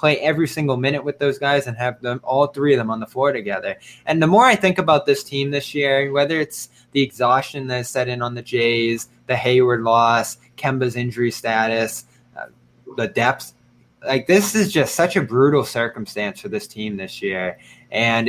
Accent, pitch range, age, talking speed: American, 115-140 Hz, 20-39, 200 wpm